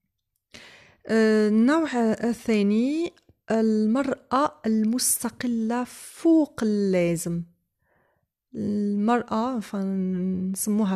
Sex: female